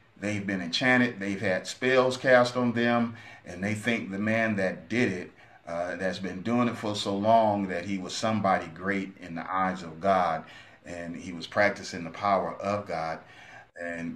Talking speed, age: 185 wpm, 30-49